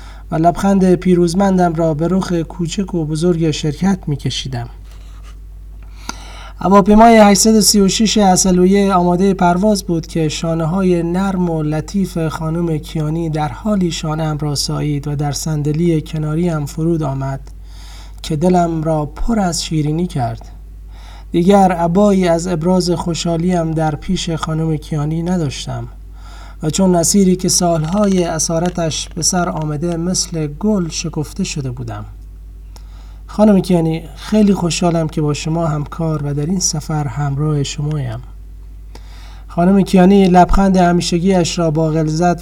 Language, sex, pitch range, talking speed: Persian, male, 140-180 Hz, 125 wpm